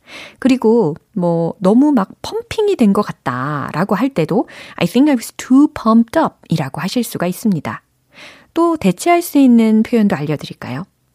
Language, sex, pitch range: Korean, female, 160-255 Hz